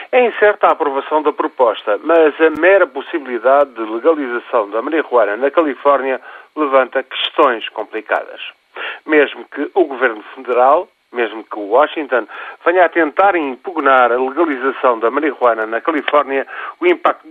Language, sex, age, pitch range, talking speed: Portuguese, male, 50-69, 125-175 Hz, 140 wpm